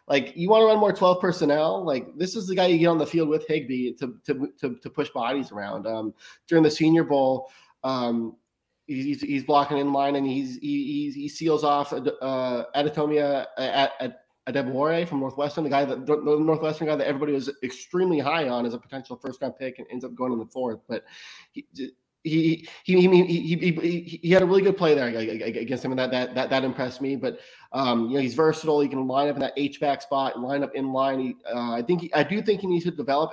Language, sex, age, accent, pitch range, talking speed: English, male, 20-39, American, 130-160 Hz, 230 wpm